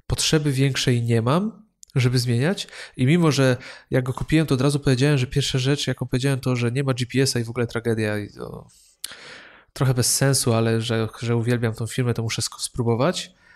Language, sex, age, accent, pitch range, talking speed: Polish, male, 20-39, native, 115-140 Hz, 195 wpm